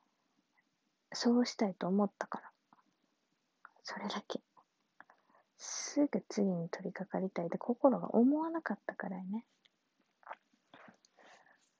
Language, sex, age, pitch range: Japanese, female, 20-39, 185-240 Hz